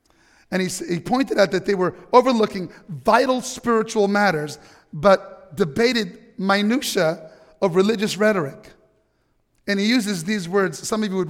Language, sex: English, male